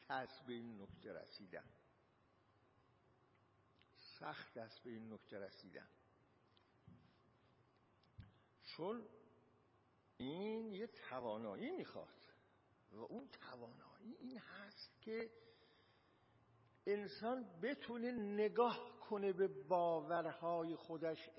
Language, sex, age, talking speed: Persian, male, 60-79, 80 wpm